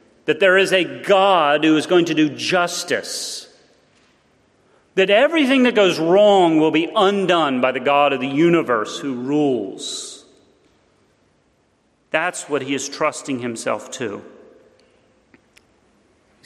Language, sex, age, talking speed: English, male, 40-59, 130 wpm